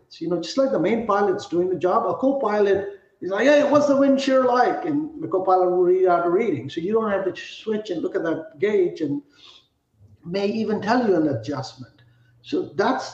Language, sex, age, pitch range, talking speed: English, male, 60-79, 150-210 Hz, 225 wpm